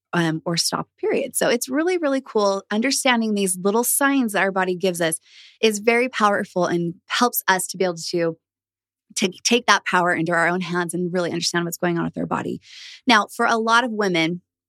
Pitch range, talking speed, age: 175-225 Hz, 210 wpm, 20-39